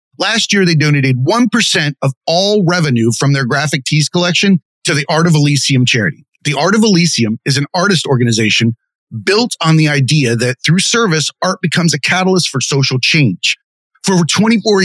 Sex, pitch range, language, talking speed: male, 140-185 Hz, English, 180 wpm